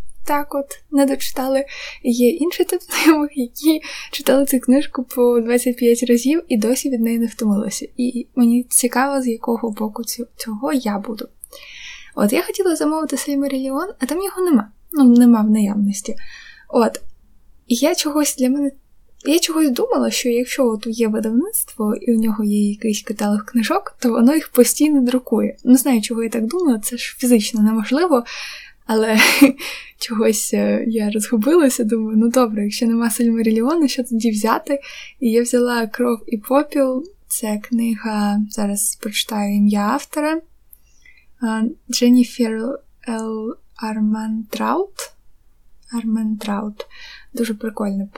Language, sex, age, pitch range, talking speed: Ukrainian, female, 20-39, 225-280 Hz, 140 wpm